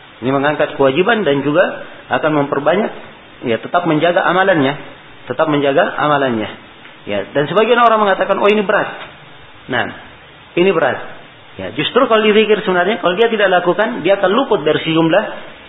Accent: native